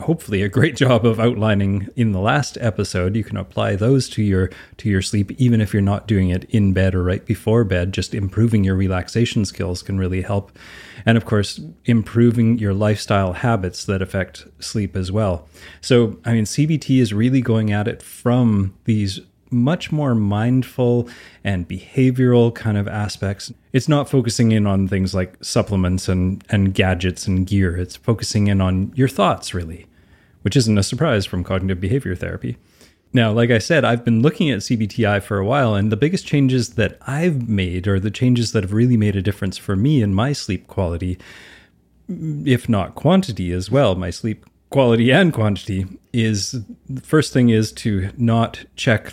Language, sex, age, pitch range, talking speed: English, male, 30-49, 95-115 Hz, 185 wpm